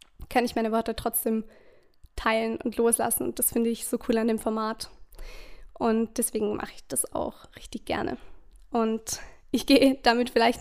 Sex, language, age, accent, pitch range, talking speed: female, German, 20-39, German, 225-250 Hz, 170 wpm